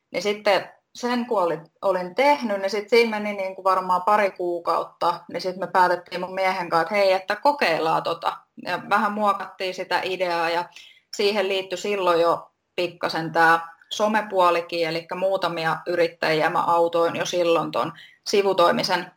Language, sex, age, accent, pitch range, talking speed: Finnish, female, 20-39, native, 170-200 Hz, 150 wpm